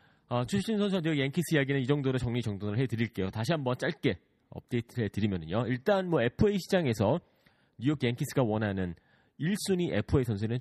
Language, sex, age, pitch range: Korean, male, 30-49, 95-140 Hz